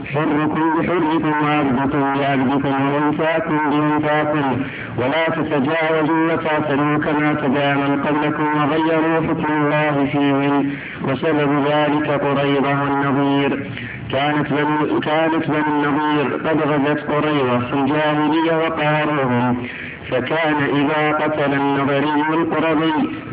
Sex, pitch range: male, 140-155 Hz